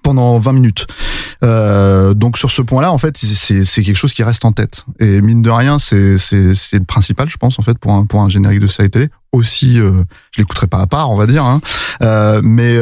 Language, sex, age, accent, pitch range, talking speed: French, male, 20-39, French, 105-135 Hz, 250 wpm